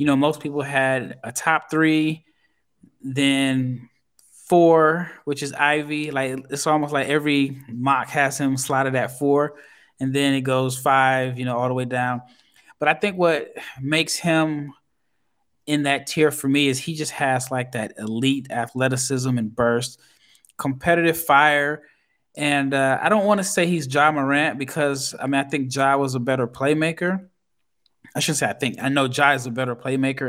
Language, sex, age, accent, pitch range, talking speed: English, male, 20-39, American, 130-145 Hz, 180 wpm